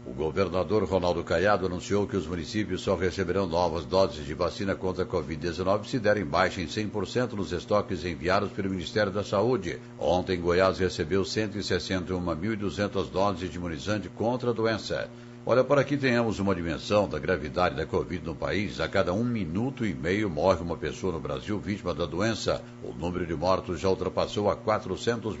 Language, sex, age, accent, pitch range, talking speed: Portuguese, male, 60-79, Brazilian, 95-115 Hz, 170 wpm